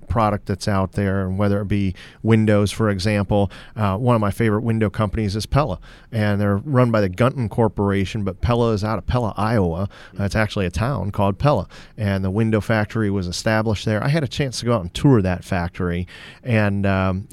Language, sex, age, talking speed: English, male, 40-59, 210 wpm